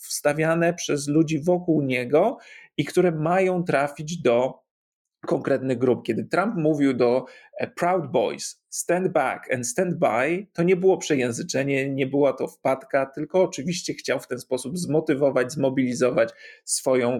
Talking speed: 140 wpm